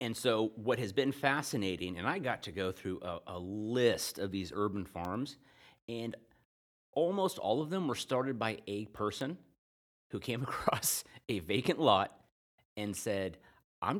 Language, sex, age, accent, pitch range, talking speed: English, male, 30-49, American, 95-120 Hz, 165 wpm